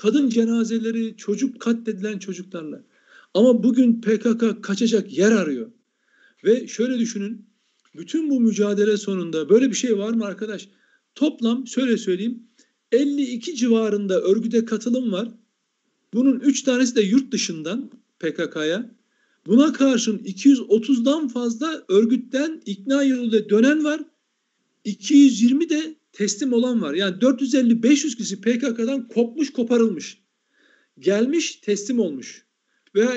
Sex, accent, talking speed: male, native, 115 wpm